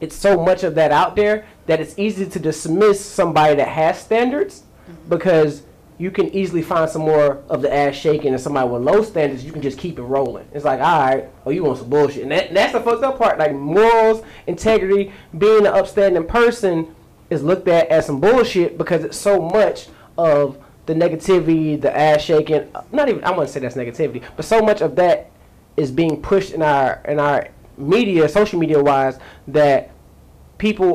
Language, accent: English, American